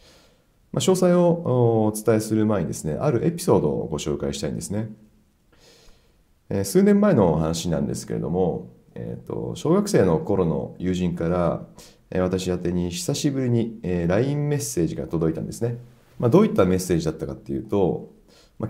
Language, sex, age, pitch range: Japanese, male, 40-59, 85-130 Hz